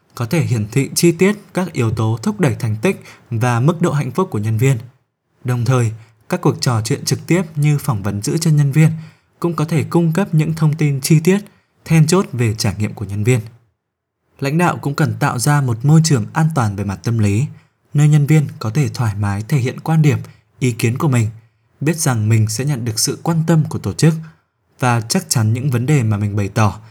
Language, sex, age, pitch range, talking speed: Vietnamese, male, 20-39, 110-150 Hz, 235 wpm